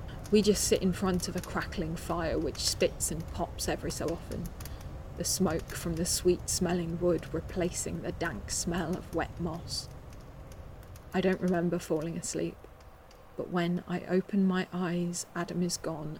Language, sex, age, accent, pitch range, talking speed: English, female, 20-39, British, 165-180 Hz, 160 wpm